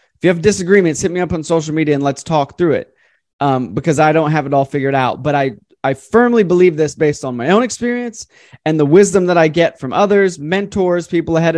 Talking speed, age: 240 wpm, 20-39